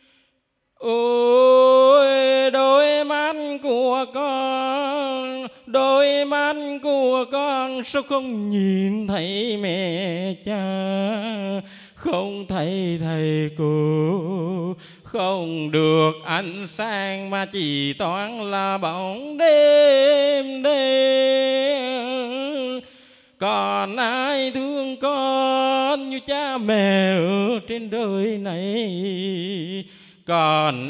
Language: Vietnamese